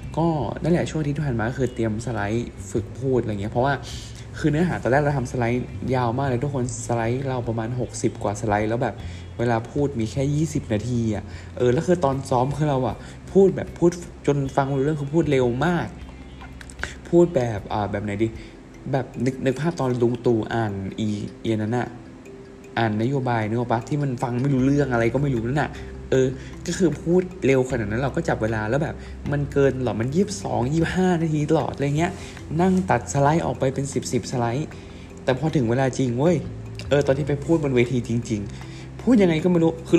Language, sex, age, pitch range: Thai, male, 20-39, 115-150 Hz